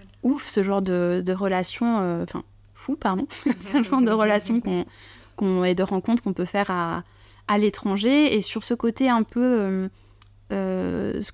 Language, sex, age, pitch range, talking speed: French, female, 20-39, 180-220 Hz, 180 wpm